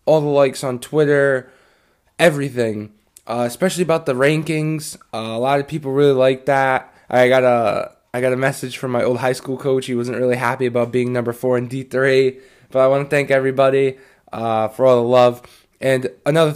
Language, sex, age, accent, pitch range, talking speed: English, male, 10-29, American, 120-140 Hz, 205 wpm